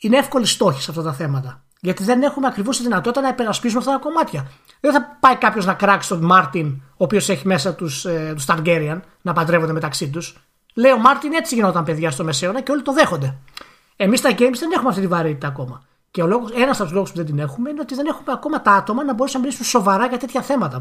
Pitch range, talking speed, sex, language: 165-240 Hz, 240 wpm, male, Greek